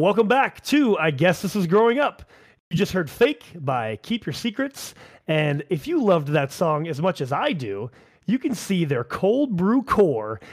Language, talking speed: English, 200 wpm